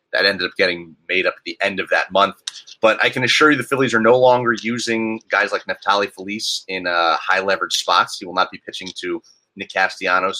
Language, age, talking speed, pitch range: English, 30-49, 225 wpm, 100-125 Hz